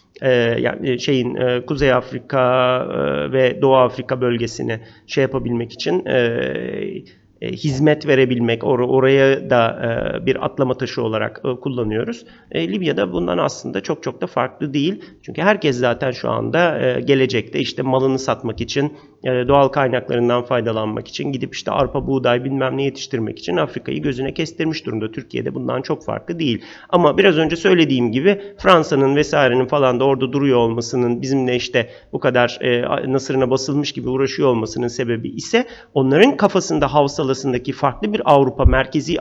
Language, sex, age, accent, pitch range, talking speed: Turkish, male, 40-59, native, 125-160 Hz, 150 wpm